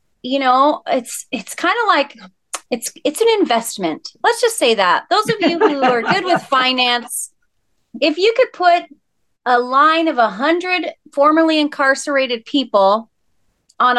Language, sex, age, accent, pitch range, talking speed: English, female, 30-49, American, 220-280 Hz, 155 wpm